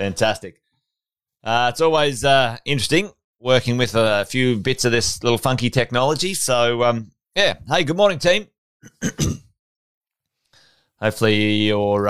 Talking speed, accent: 125 wpm, Australian